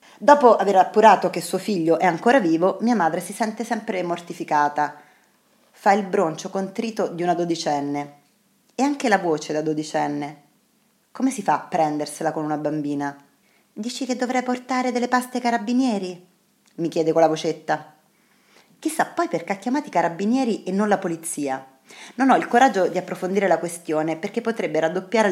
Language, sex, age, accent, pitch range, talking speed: Italian, female, 30-49, native, 155-215 Hz, 170 wpm